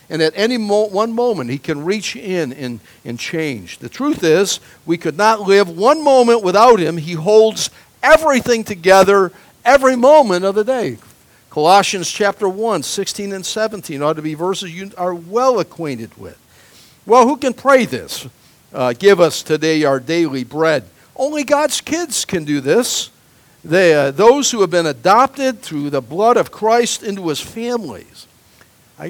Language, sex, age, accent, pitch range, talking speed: English, male, 50-69, American, 140-215 Hz, 165 wpm